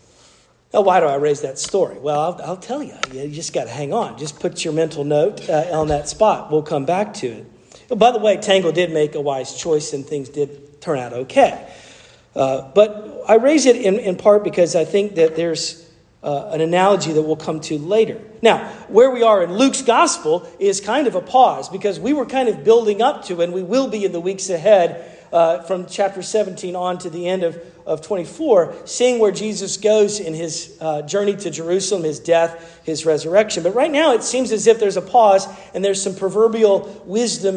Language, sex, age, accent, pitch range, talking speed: English, male, 50-69, American, 165-220 Hz, 215 wpm